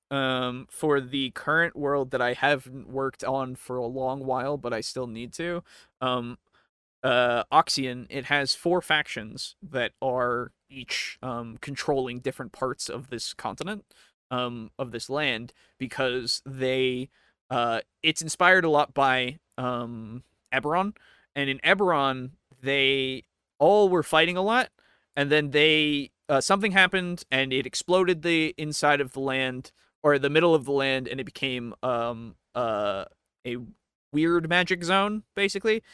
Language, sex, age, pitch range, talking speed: English, male, 20-39, 125-160 Hz, 150 wpm